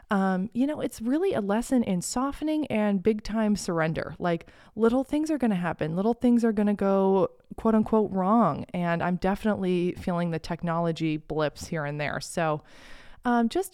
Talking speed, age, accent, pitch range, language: 185 wpm, 20-39, American, 170-220 Hz, English